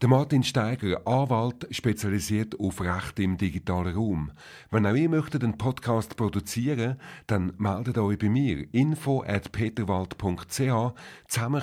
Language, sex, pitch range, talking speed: German, male, 90-125 Hz, 120 wpm